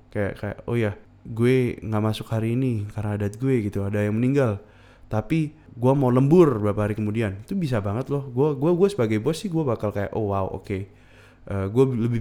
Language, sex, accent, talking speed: Indonesian, male, native, 205 wpm